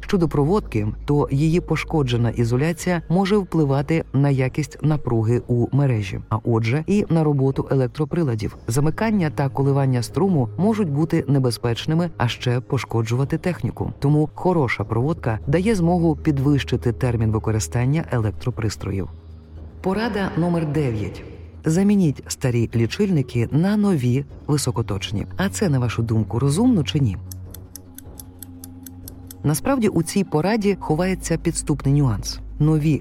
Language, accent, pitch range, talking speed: Ukrainian, native, 115-160 Hz, 115 wpm